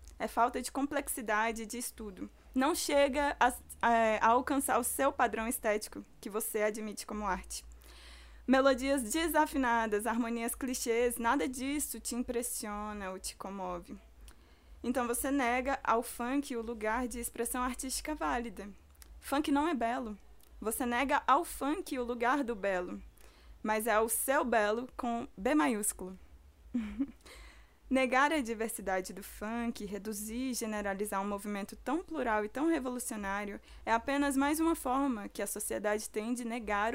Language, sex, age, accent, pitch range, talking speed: Portuguese, female, 20-39, Brazilian, 210-265 Hz, 145 wpm